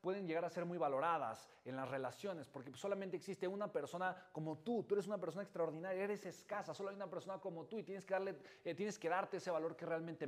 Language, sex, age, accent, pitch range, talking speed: Spanish, male, 30-49, Mexican, 145-195 Hz, 240 wpm